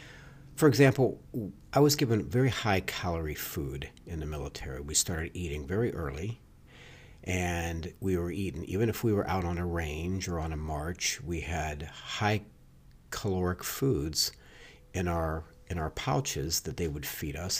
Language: English